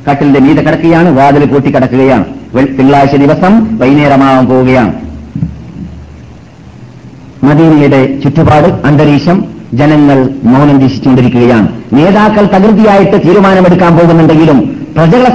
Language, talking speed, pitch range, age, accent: Malayalam, 80 wpm, 140-215 Hz, 50-69, native